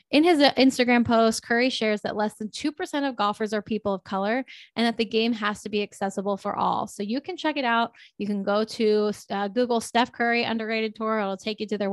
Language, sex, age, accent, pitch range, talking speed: English, female, 10-29, American, 205-245 Hz, 235 wpm